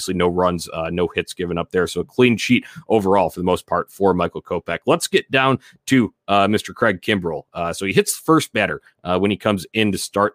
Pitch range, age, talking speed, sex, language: 85-105 Hz, 30-49, 250 wpm, male, English